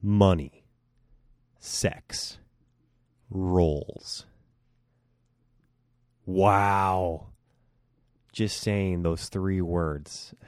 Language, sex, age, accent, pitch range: English, male, 30-49, American, 90-110 Hz